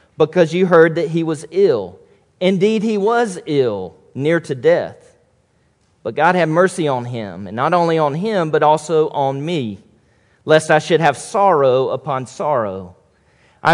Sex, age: male, 40-59